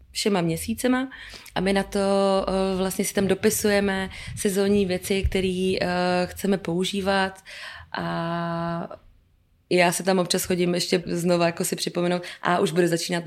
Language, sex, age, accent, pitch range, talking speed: Czech, female, 20-39, native, 160-190 Hz, 135 wpm